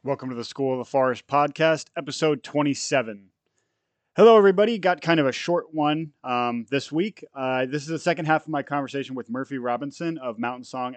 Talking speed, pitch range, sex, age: 195 wpm, 120-150 Hz, male, 30-49